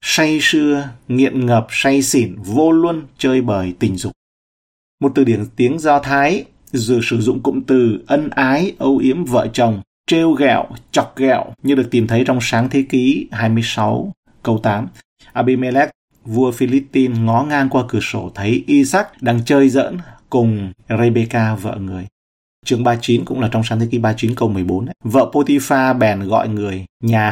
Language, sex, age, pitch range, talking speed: Vietnamese, male, 30-49, 110-135 Hz, 175 wpm